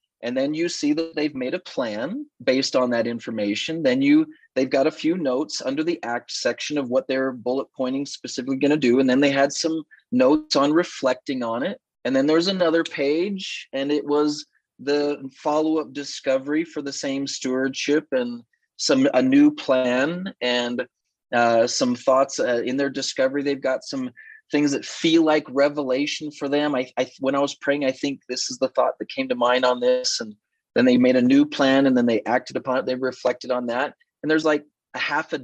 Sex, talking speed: male, 205 wpm